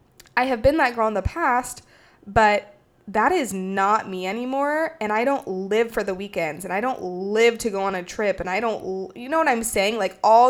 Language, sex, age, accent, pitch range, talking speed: English, female, 20-39, American, 185-230 Hz, 230 wpm